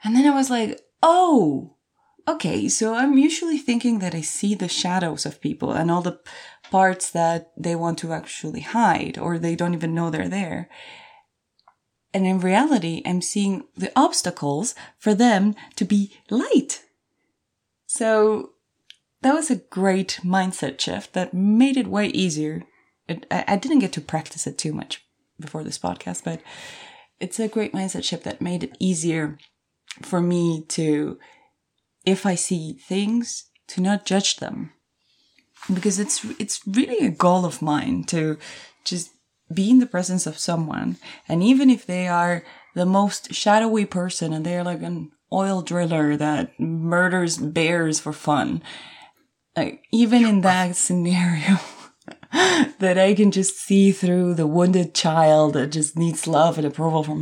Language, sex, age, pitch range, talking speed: English, female, 20-39, 165-210 Hz, 155 wpm